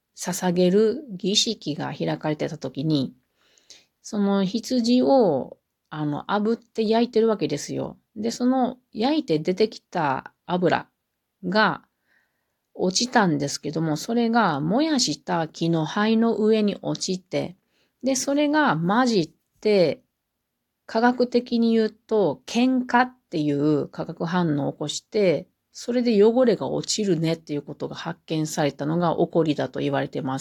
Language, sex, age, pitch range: Japanese, female, 40-59, 155-235 Hz